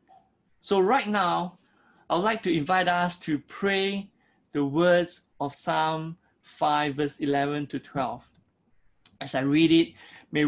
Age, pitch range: 20-39, 140-165 Hz